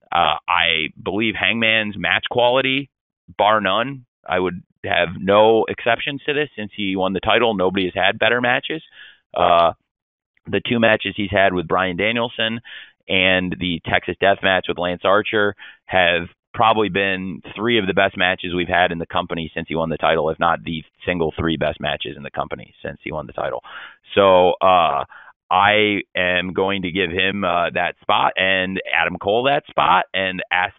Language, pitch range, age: English, 90-110 Hz, 30-49